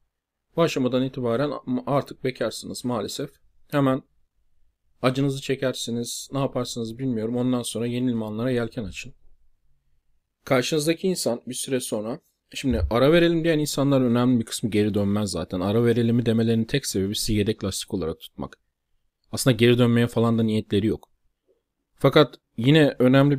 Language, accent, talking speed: Turkish, native, 140 wpm